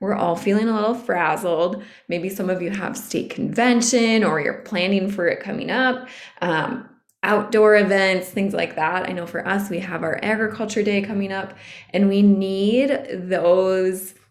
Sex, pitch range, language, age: female, 175-215 Hz, English, 20-39